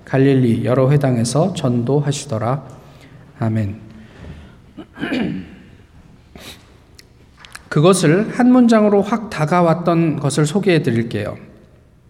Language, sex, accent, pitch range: Korean, male, native, 125-165 Hz